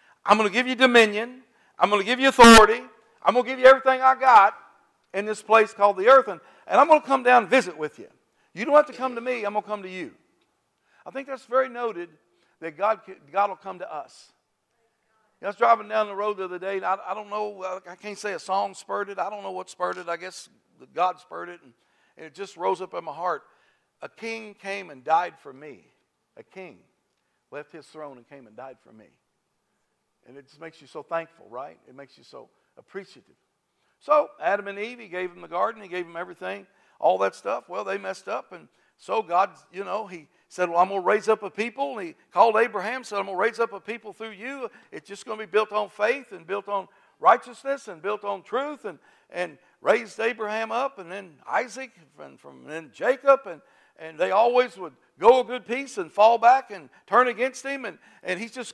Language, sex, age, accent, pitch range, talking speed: English, male, 60-79, American, 185-245 Hz, 240 wpm